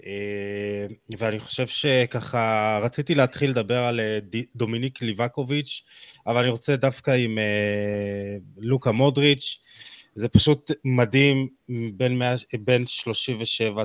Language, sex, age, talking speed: Hebrew, male, 20-39, 90 wpm